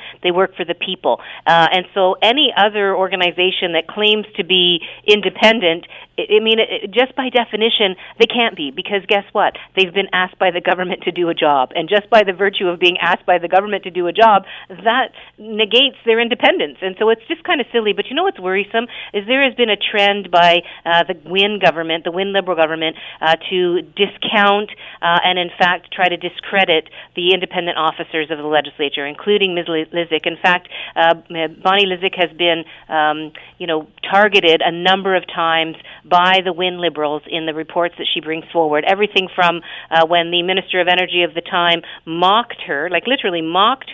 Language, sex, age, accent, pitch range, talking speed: English, female, 50-69, American, 170-200 Hz, 200 wpm